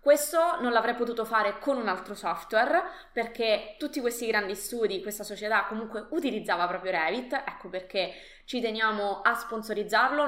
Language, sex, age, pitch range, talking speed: Italian, female, 20-39, 205-245 Hz, 150 wpm